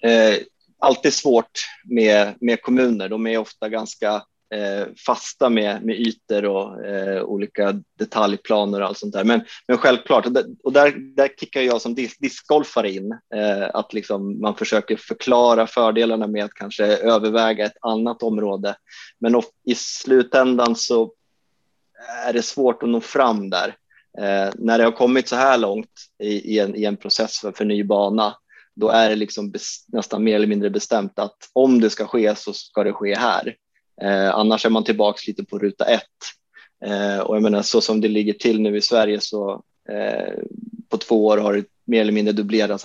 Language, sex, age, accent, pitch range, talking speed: Swedish, male, 20-39, native, 105-115 Hz, 170 wpm